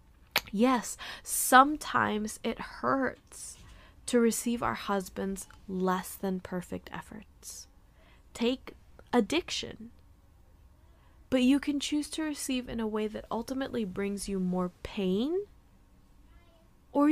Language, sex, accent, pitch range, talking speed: English, female, American, 190-245 Hz, 100 wpm